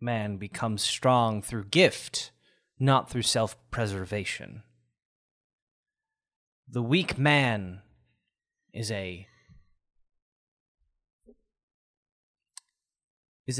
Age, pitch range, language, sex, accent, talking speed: 20-39, 100-140 Hz, English, male, American, 60 wpm